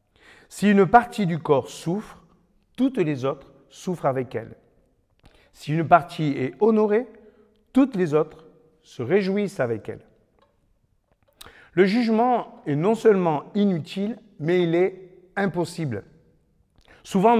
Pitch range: 160-225 Hz